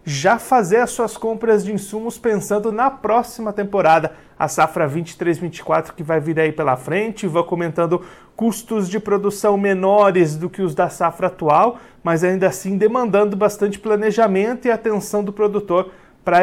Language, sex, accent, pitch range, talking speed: Portuguese, male, Brazilian, 170-220 Hz, 155 wpm